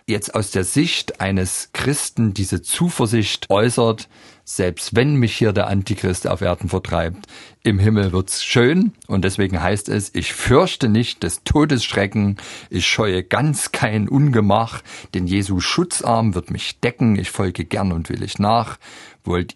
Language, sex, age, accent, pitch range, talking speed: German, male, 50-69, German, 95-120 Hz, 155 wpm